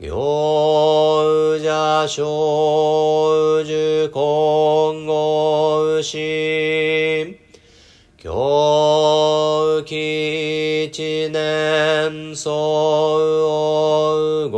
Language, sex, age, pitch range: Japanese, male, 40-59, 150-155 Hz